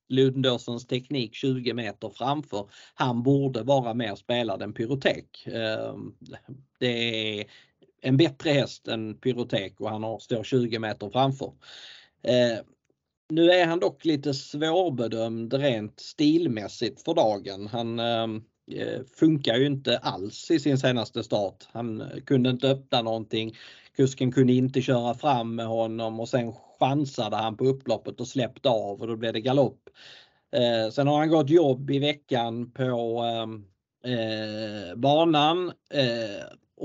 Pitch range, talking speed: 115-135 Hz, 135 wpm